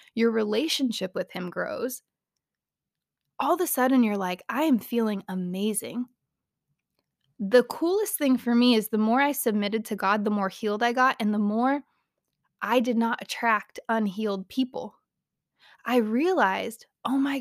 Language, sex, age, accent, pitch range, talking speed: English, female, 20-39, American, 200-265 Hz, 155 wpm